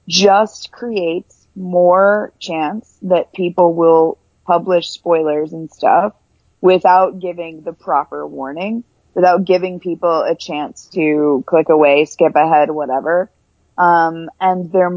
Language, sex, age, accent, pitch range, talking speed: English, female, 30-49, American, 160-195 Hz, 120 wpm